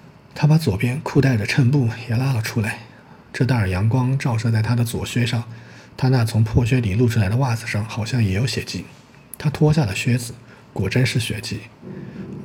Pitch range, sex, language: 110-125 Hz, male, Chinese